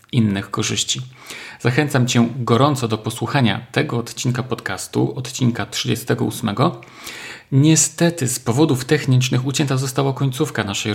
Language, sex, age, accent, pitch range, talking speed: Polish, male, 40-59, native, 115-135 Hz, 110 wpm